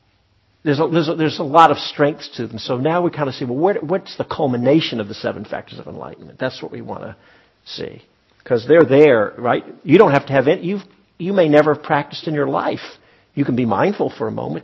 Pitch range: 105-145 Hz